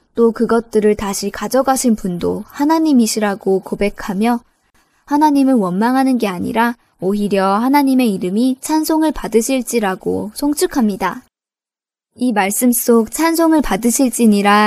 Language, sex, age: Korean, male, 20-39